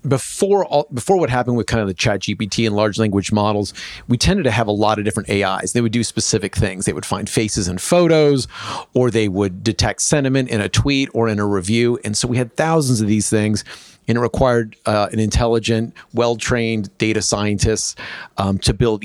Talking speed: 215 wpm